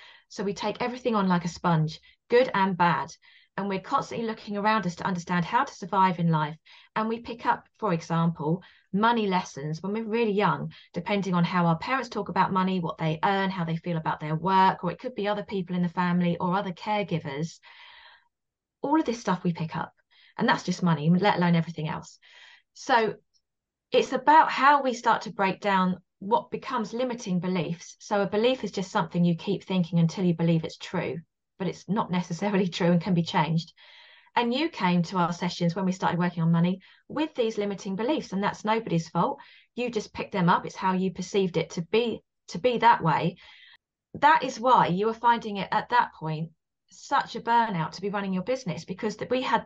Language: English